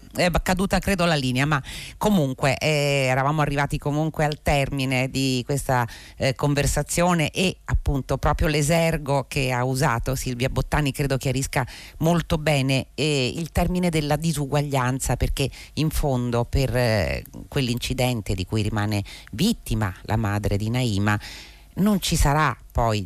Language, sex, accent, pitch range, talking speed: Italian, female, native, 115-150 Hz, 135 wpm